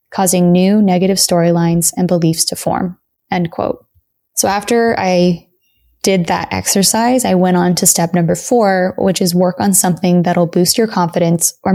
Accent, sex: American, female